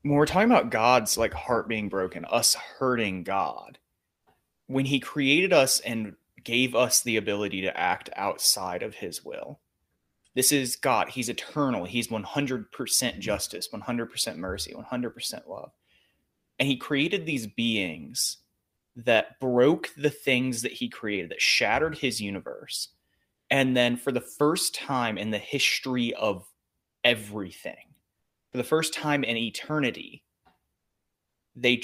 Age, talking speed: 20-39, 140 wpm